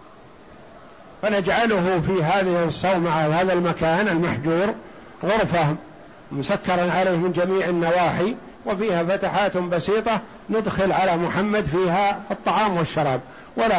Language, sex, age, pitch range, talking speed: Arabic, male, 50-69, 170-210 Hz, 100 wpm